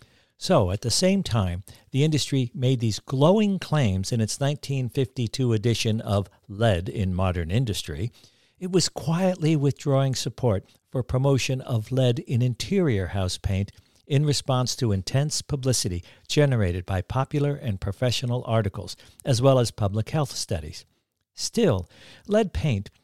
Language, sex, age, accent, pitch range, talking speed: English, male, 60-79, American, 105-140 Hz, 140 wpm